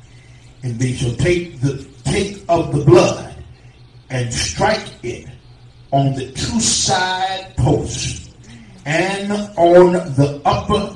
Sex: male